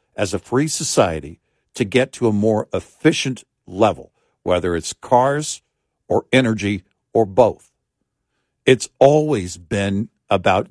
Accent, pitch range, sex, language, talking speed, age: American, 100-135 Hz, male, English, 125 wpm, 60-79